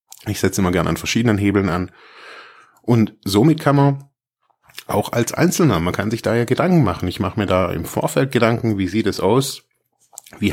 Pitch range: 95-120 Hz